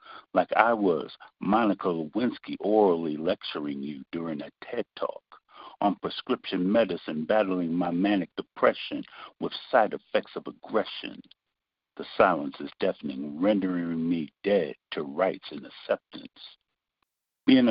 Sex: male